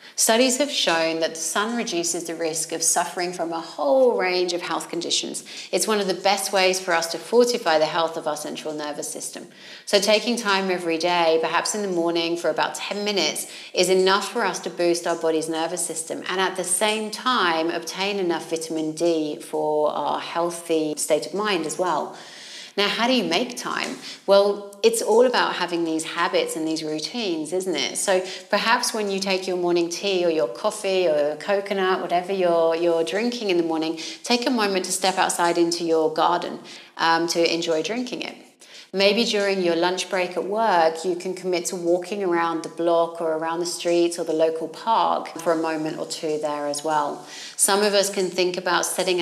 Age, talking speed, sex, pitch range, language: 30-49, 200 wpm, female, 165-195 Hz, English